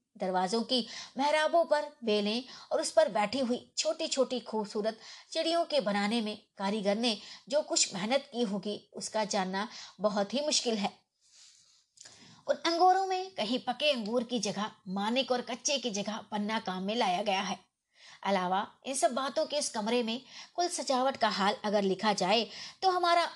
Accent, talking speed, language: native, 165 wpm, Hindi